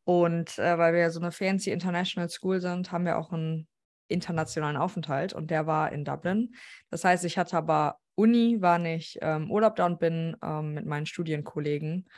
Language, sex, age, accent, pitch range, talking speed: German, female, 20-39, German, 160-190 Hz, 190 wpm